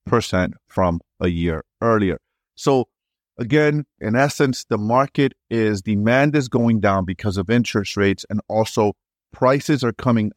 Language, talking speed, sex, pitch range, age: English, 145 wpm, male, 95-120 Hz, 30-49